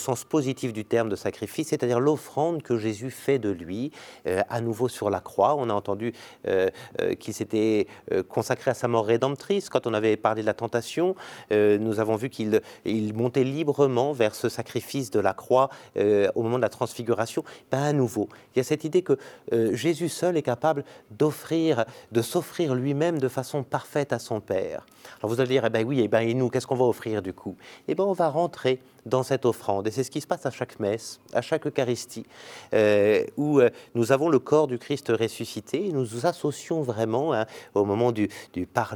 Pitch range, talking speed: 115-155 Hz, 220 wpm